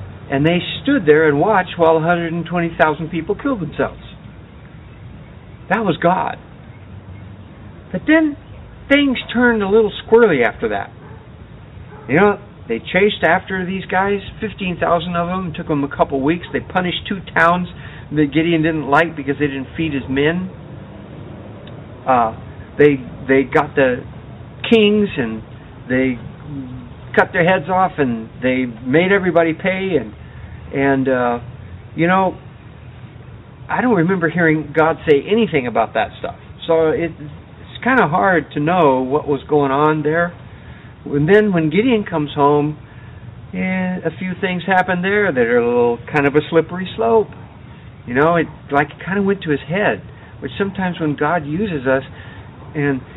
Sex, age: male, 50-69